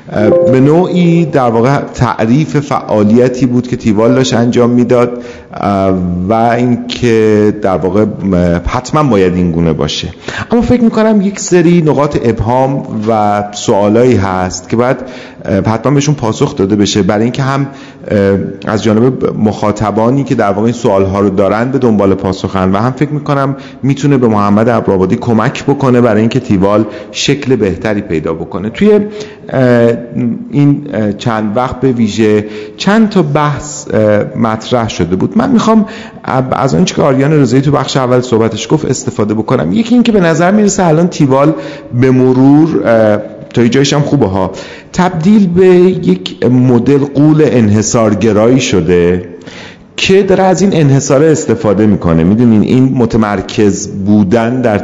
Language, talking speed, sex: Persian, 140 wpm, male